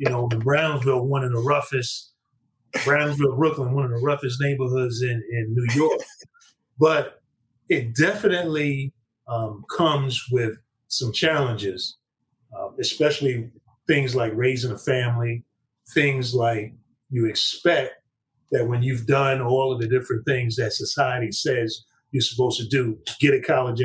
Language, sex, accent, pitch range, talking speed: English, male, American, 115-140 Hz, 140 wpm